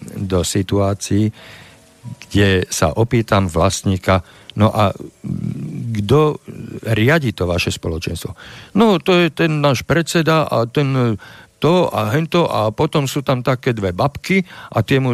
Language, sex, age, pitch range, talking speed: Slovak, male, 50-69, 90-120 Hz, 135 wpm